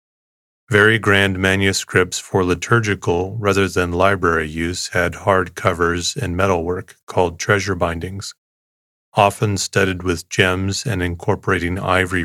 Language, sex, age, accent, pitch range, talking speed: English, male, 30-49, American, 85-100 Hz, 120 wpm